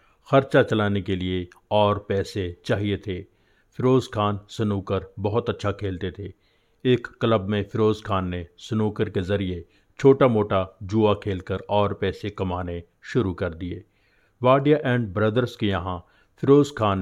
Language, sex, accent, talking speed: Hindi, male, native, 145 wpm